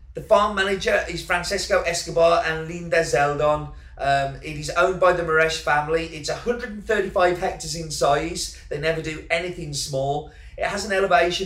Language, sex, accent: English, male, British